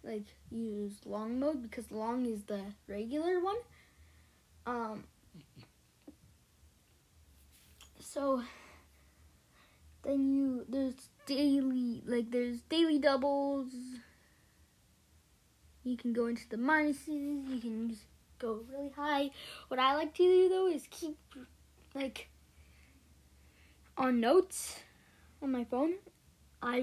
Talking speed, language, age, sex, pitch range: 105 wpm, English, 10-29, female, 205-285 Hz